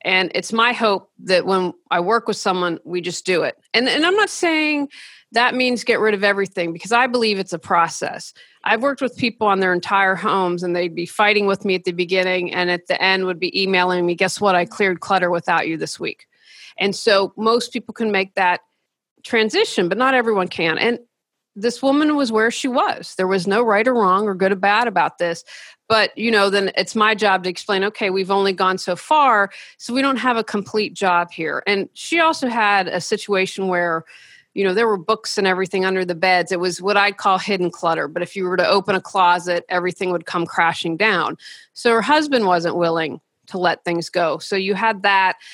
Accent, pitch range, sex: American, 180-225 Hz, female